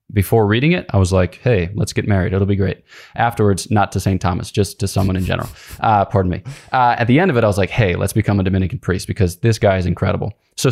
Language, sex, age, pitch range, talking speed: English, male, 20-39, 95-115 Hz, 265 wpm